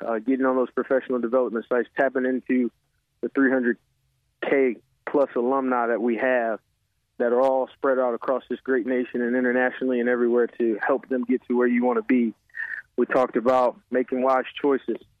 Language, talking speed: English, 180 wpm